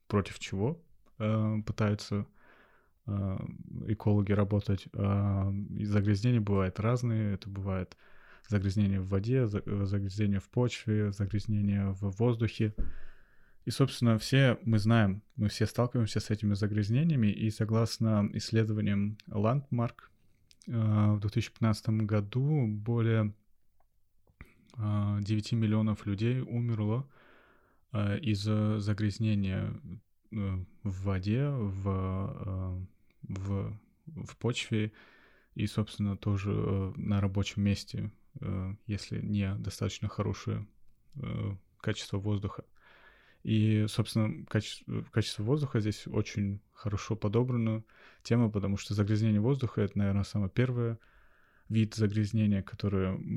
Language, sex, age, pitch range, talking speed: Russian, male, 20-39, 100-115 Hz, 90 wpm